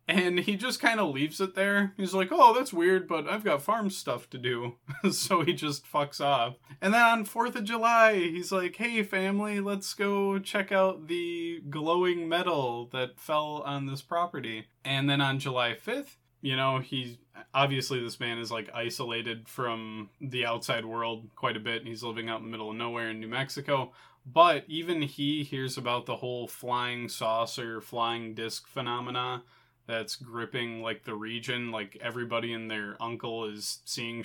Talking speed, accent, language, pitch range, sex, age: 180 wpm, American, English, 120-165 Hz, male, 20-39